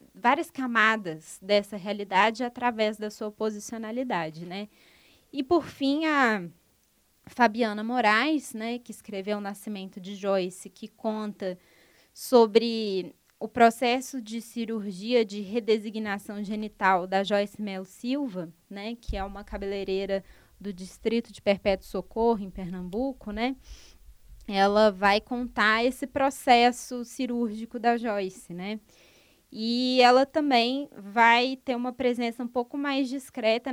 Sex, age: female, 20-39